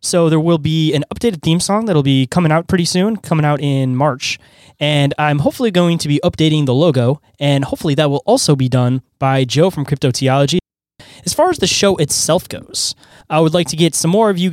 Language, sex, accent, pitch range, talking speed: English, male, American, 135-180 Hz, 225 wpm